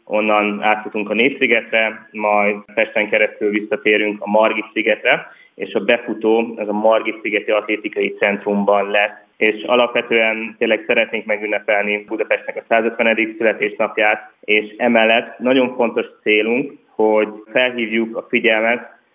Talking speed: 120 wpm